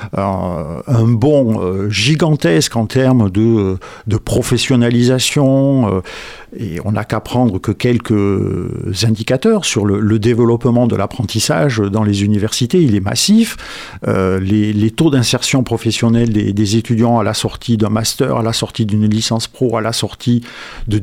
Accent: French